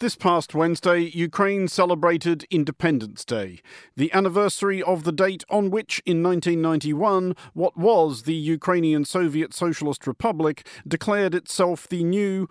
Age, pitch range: 40-59, 140-185 Hz